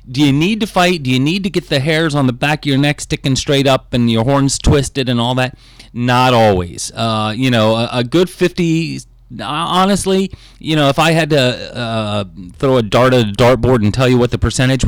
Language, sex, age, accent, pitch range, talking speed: English, male, 30-49, American, 115-160 Hz, 230 wpm